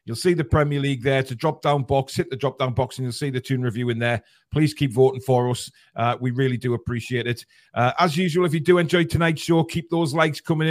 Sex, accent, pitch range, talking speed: male, British, 125-145 Hz, 260 wpm